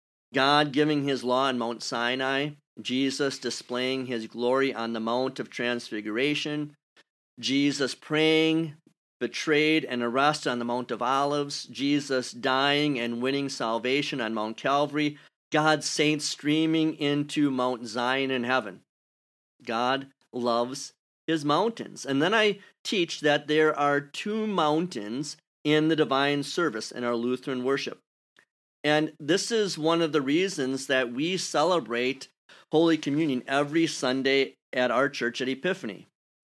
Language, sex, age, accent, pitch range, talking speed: English, male, 40-59, American, 125-155 Hz, 135 wpm